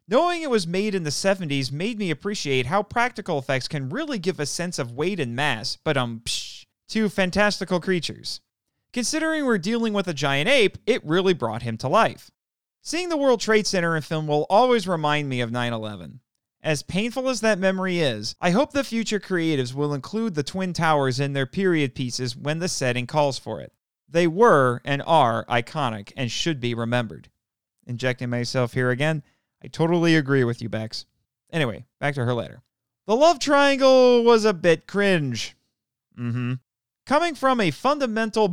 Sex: male